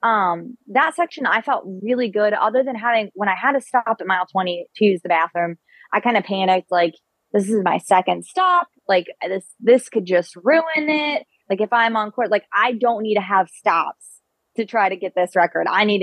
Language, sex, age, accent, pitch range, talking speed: English, female, 20-39, American, 180-220 Hz, 220 wpm